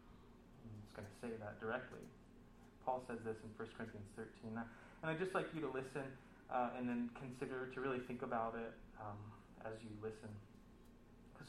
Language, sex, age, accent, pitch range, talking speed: English, male, 30-49, American, 105-120 Hz, 180 wpm